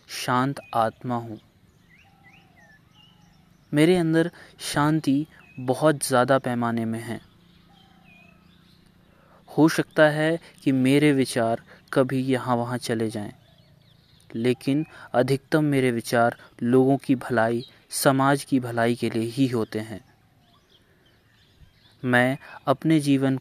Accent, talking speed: native, 105 wpm